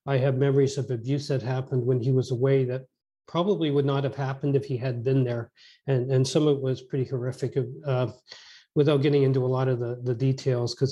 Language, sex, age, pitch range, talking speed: English, male, 40-59, 130-145 Hz, 230 wpm